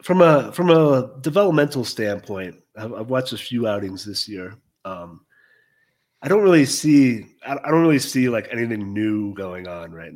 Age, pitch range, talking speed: 30-49, 100-140 Hz, 165 wpm